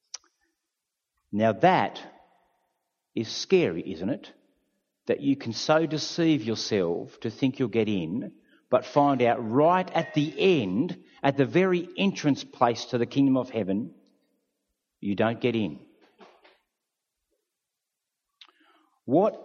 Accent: Australian